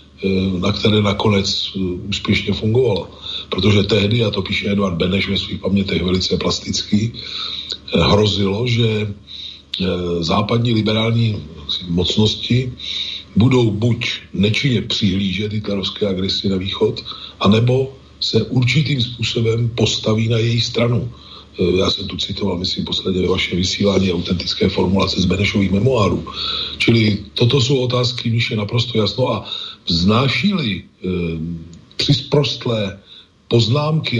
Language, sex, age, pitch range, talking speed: Slovak, male, 40-59, 100-120 Hz, 110 wpm